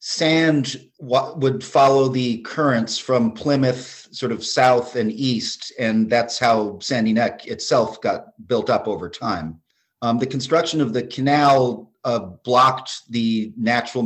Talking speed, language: 145 wpm, English